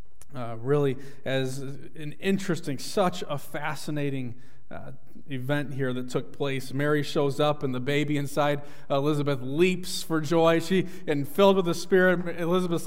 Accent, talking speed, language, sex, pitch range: American, 155 wpm, English, male, 115-170 Hz